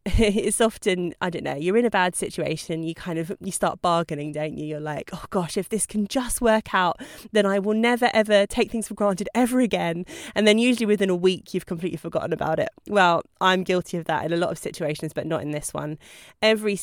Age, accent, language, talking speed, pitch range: 20-39, British, English, 235 wpm, 165-200 Hz